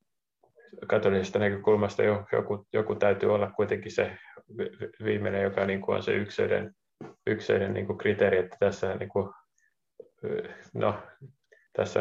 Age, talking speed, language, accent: 30-49, 105 wpm, Finnish, native